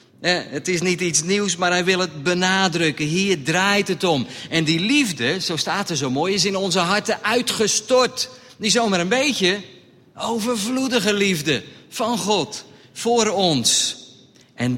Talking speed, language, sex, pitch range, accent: 155 wpm, Dutch, male, 145-190 Hz, Dutch